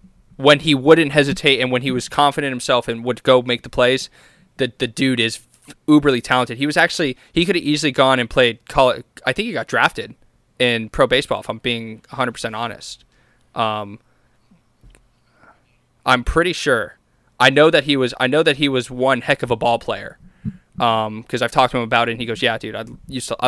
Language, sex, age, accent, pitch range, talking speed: English, male, 20-39, American, 120-140 Hz, 215 wpm